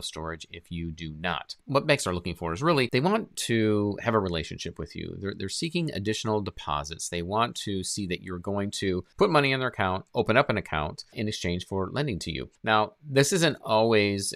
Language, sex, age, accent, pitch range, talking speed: English, male, 40-59, American, 85-105 Hz, 215 wpm